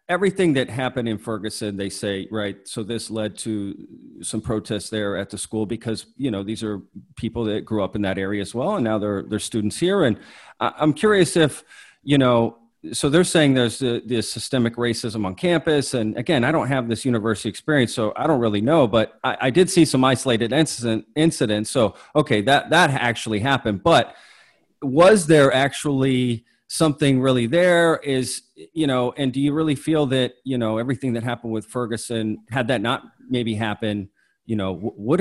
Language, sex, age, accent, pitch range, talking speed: English, male, 40-59, American, 110-135 Hz, 195 wpm